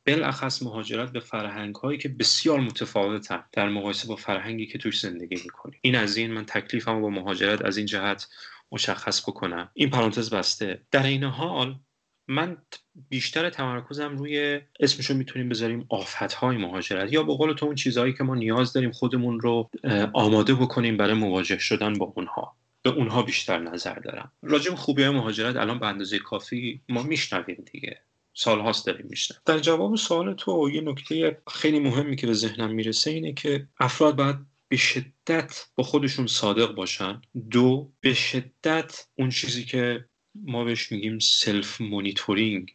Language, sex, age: Persian, male, 30-49